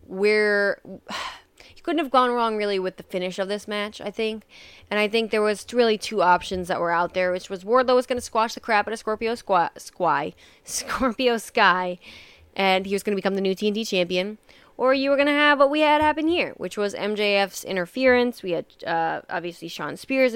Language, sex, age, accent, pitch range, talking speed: English, female, 20-39, American, 180-250 Hz, 220 wpm